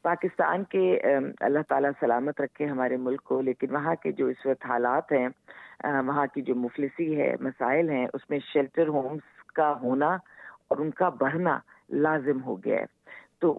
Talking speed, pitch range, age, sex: 170 wpm, 135-170 Hz, 50-69, female